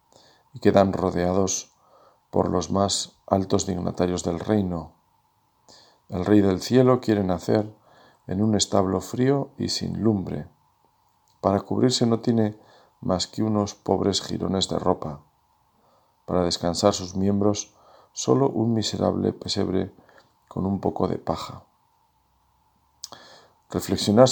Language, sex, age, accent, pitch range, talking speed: Spanish, male, 50-69, Spanish, 90-105 Hz, 120 wpm